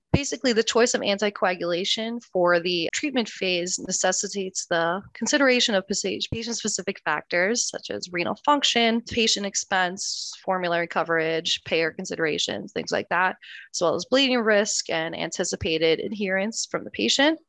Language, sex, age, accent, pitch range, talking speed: English, female, 20-39, American, 170-225 Hz, 135 wpm